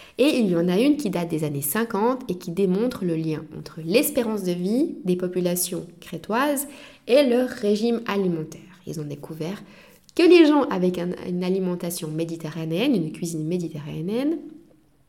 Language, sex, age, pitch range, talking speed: French, female, 20-39, 175-245 Hz, 160 wpm